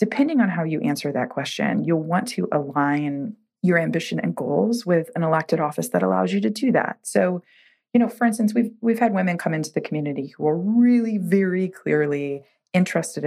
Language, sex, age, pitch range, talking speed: English, female, 30-49, 145-230 Hz, 200 wpm